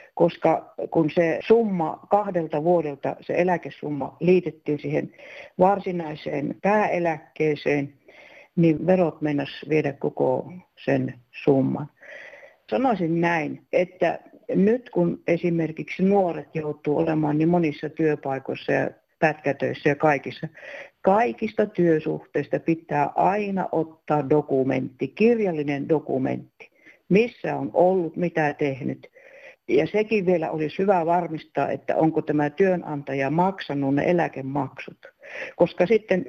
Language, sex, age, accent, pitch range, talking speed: Finnish, female, 60-79, native, 150-185 Hz, 105 wpm